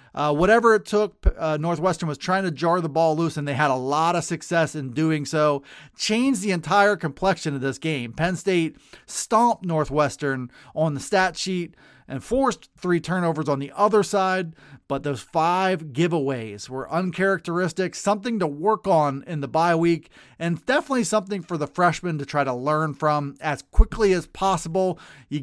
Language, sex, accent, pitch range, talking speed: English, male, American, 145-190 Hz, 180 wpm